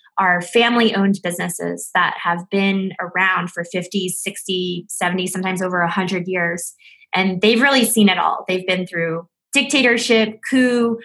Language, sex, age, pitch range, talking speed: English, female, 20-39, 175-205 Hz, 140 wpm